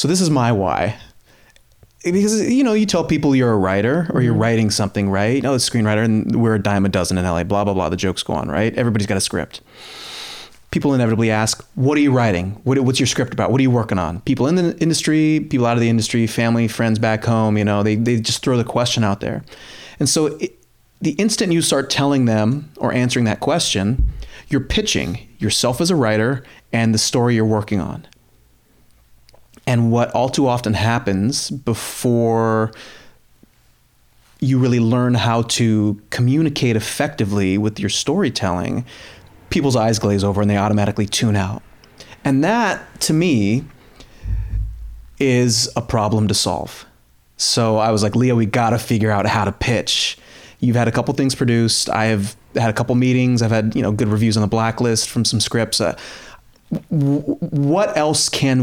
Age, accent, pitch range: 30-49, American, 105-130 Hz